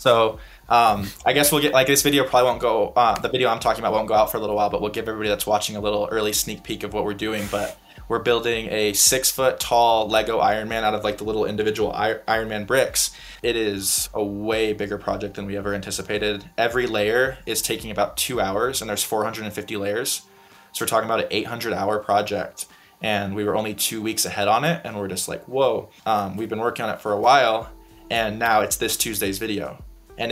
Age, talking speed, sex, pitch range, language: 20-39, 235 wpm, male, 105-110 Hz, English